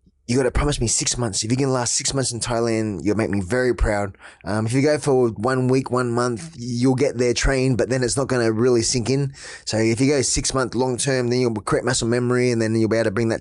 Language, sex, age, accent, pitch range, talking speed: English, male, 20-39, Australian, 110-130 Hz, 275 wpm